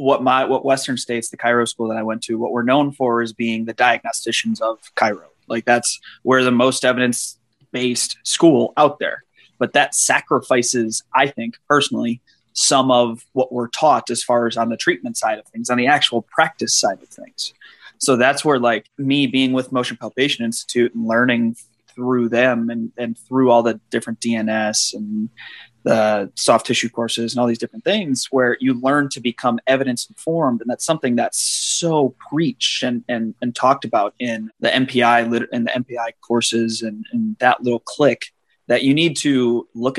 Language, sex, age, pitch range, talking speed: English, male, 20-39, 115-135 Hz, 190 wpm